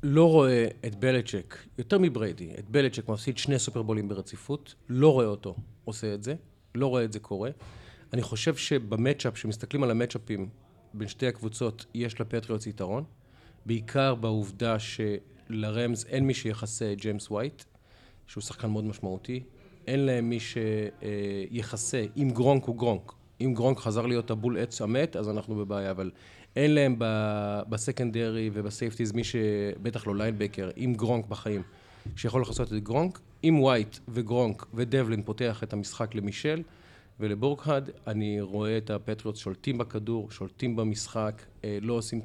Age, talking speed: 40-59, 140 wpm